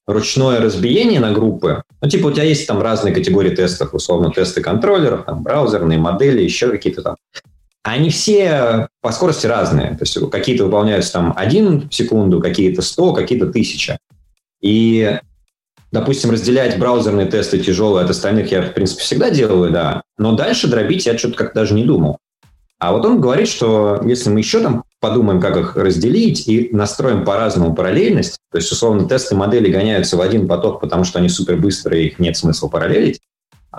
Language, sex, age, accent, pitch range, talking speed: Russian, male, 20-39, native, 90-120 Hz, 170 wpm